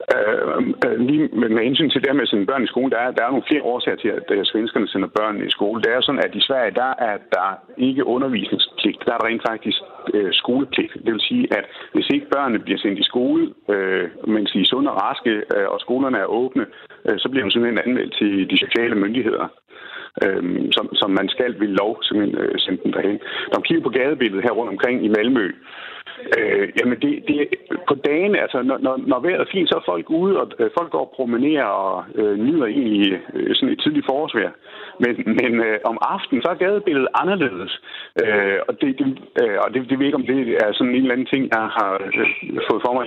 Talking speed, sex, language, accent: 215 wpm, male, Danish, native